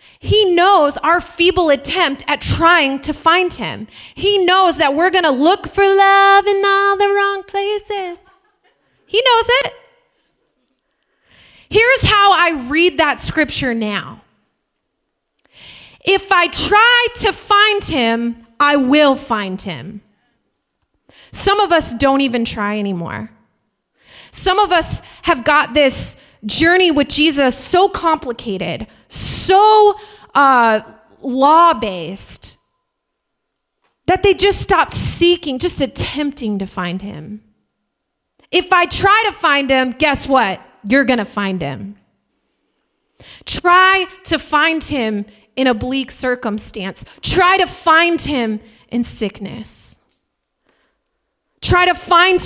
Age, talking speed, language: 30-49, 120 wpm, English